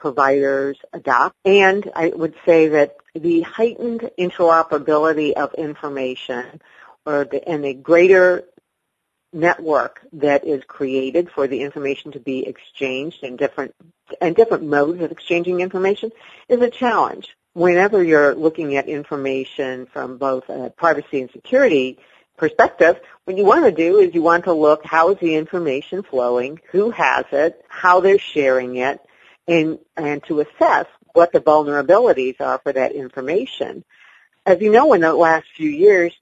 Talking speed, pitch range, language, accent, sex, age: 145 wpm, 145-180 Hz, English, American, female, 50-69